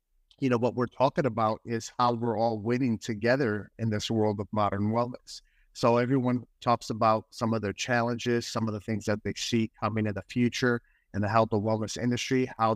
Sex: male